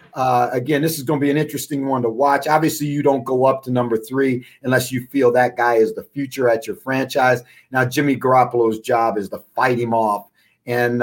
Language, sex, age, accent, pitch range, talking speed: English, male, 40-59, American, 120-150 Hz, 225 wpm